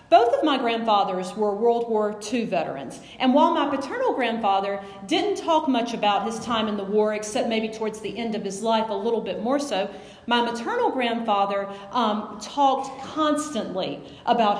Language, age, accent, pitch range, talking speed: English, 40-59, American, 220-285 Hz, 175 wpm